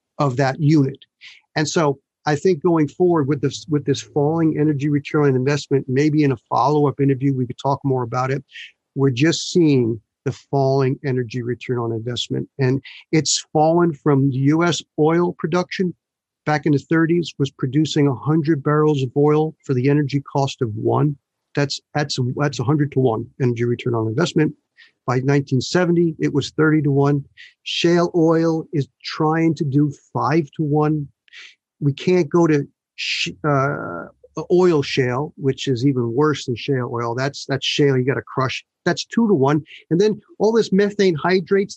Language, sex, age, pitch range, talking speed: English, male, 50-69, 135-165 Hz, 175 wpm